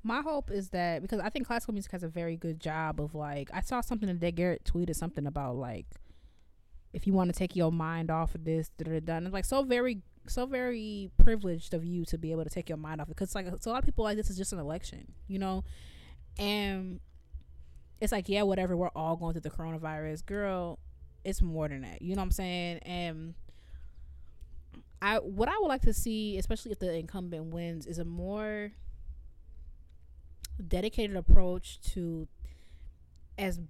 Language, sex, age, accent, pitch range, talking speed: English, female, 20-39, American, 150-195 Hz, 205 wpm